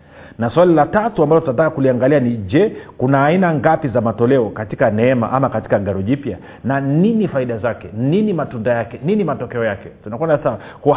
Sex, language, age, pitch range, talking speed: male, Swahili, 40-59, 130-160 Hz, 170 wpm